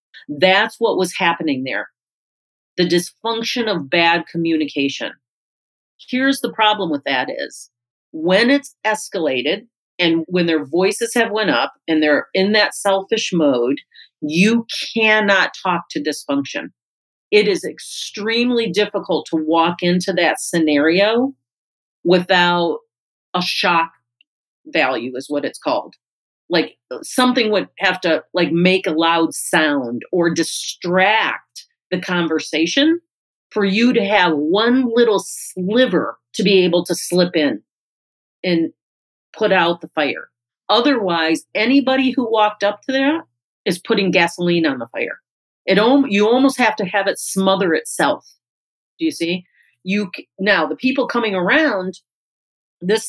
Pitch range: 165-225 Hz